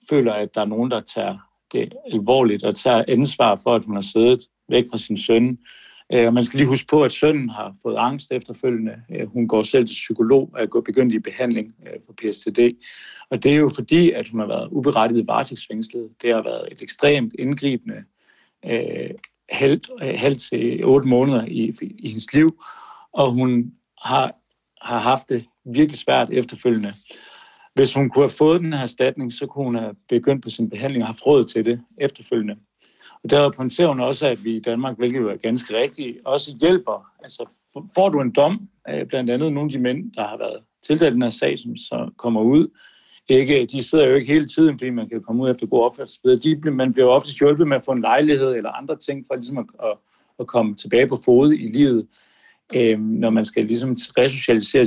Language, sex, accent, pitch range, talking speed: Danish, male, native, 115-145 Hz, 200 wpm